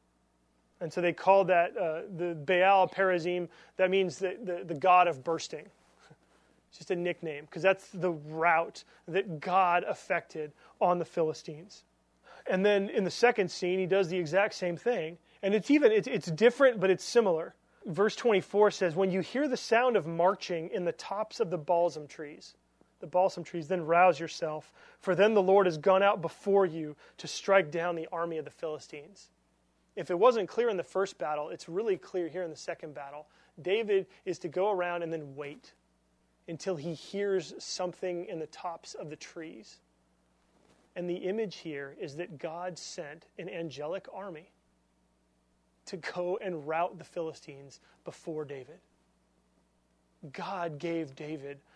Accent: American